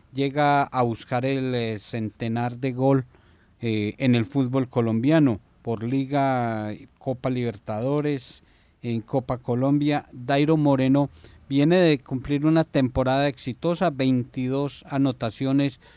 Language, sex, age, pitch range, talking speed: Spanish, male, 40-59, 120-145 Hz, 110 wpm